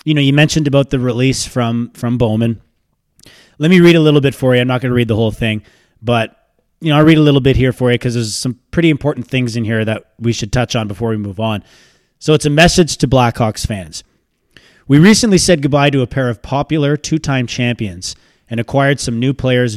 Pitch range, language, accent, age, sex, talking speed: 115-150 Hz, English, American, 20-39, male, 235 wpm